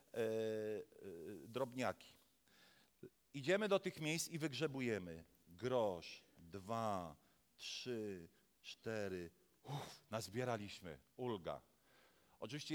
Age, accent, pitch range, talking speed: 40-59, native, 130-195 Hz, 65 wpm